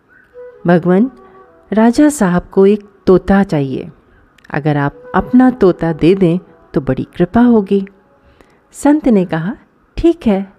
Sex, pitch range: female, 180-300 Hz